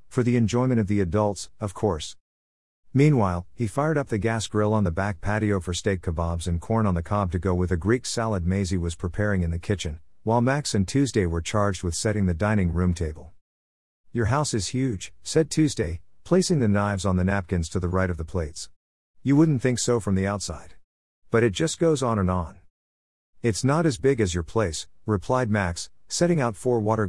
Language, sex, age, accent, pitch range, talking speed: English, male, 50-69, American, 85-115 Hz, 215 wpm